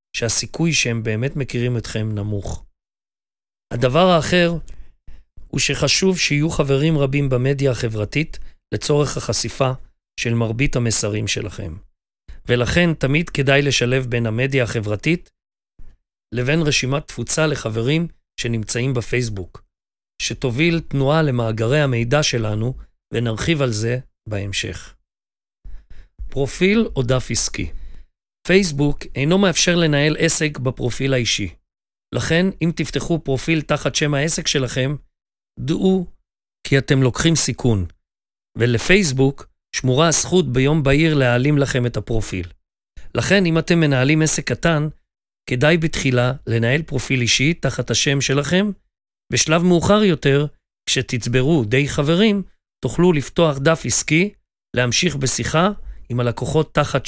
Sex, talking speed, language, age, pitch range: male, 110 wpm, Hebrew, 40-59, 120-155 Hz